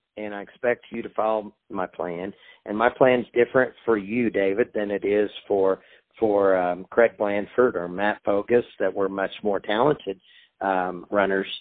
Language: English